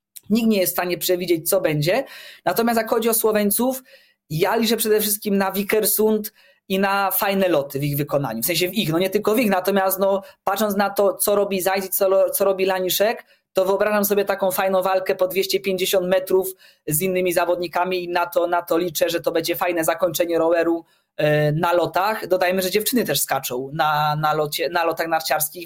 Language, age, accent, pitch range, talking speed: Polish, 20-39, native, 175-205 Hz, 195 wpm